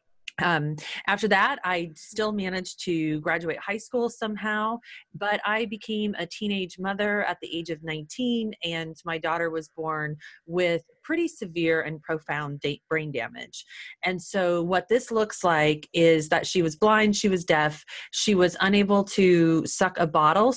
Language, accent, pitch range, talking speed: English, American, 160-195 Hz, 160 wpm